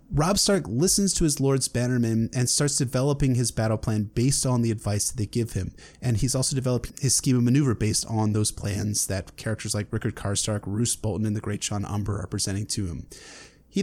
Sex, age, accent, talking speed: male, 30-49, American, 215 wpm